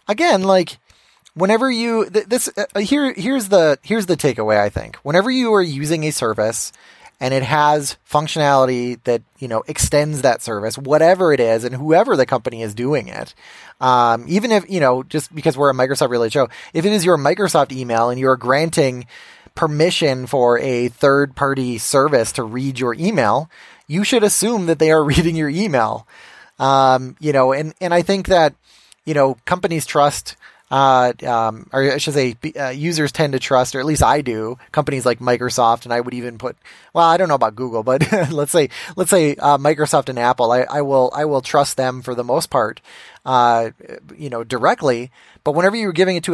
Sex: male